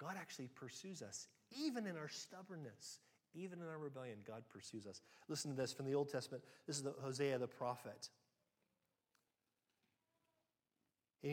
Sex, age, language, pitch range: male, 40-59, English, 140-205 Hz